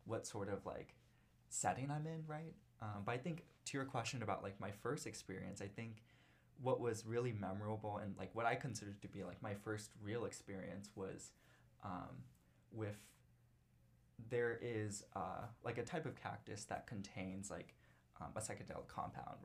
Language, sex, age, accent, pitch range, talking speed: English, male, 20-39, American, 95-125 Hz, 175 wpm